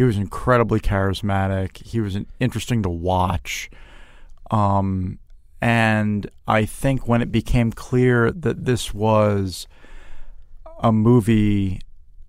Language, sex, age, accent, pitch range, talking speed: English, male, 40-59, American, 95-110 Hz, 110 wpm